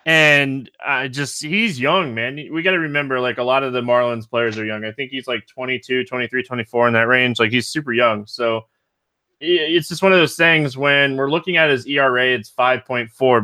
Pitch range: 115-150 Hz